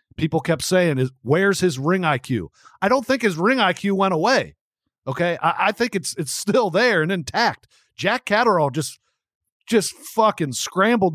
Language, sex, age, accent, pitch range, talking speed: English, male, 50-69, American, 135-190 Hz, 170 wpm